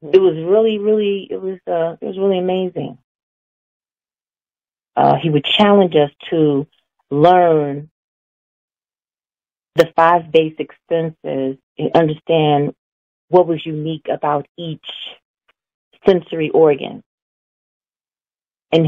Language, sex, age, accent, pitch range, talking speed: English, female, 30-49, American, 145-175 Hz, 100 wpm